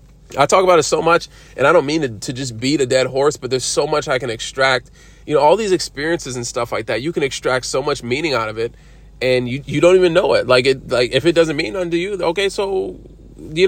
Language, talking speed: English, 270 wpm